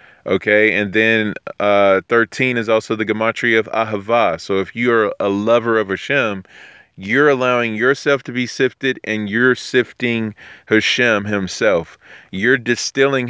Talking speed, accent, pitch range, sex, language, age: 145 wpm, American, 105-120 Hz, male, English, 30-49